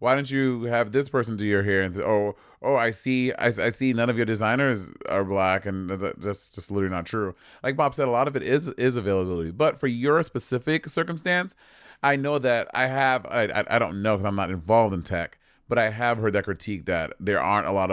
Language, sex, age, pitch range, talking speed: English, male, 30-49, 100-135 Hz, 235 wpm